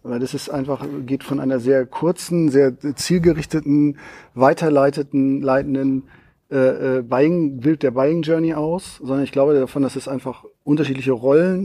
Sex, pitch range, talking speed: male, 130-155 Hz, 135 wpm